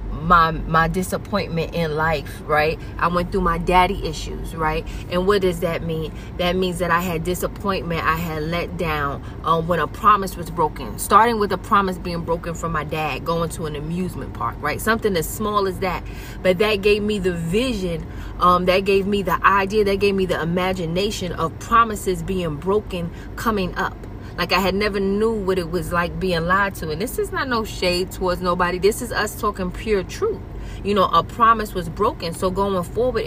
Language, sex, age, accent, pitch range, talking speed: English, female, 20-39, American, 165-205 Hz, 200 wpm